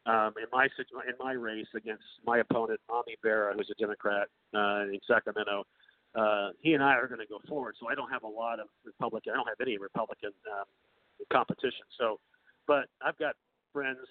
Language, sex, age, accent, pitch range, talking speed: English, male, 50-69, American, 115-155 Hz, 200 wpm